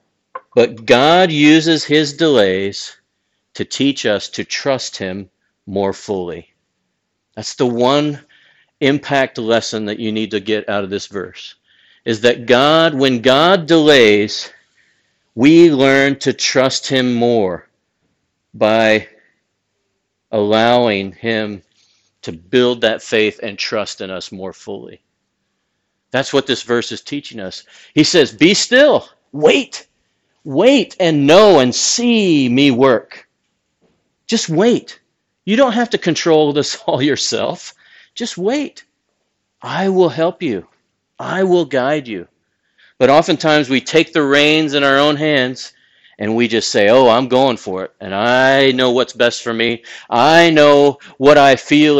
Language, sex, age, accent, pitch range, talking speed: English, male, 50-69, American, 115-150 Hz, 140 wpm